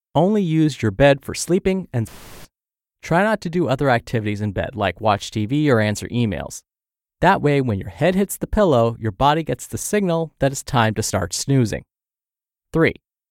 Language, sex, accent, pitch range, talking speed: English, male, American, 105-155 Hz, 185 wpm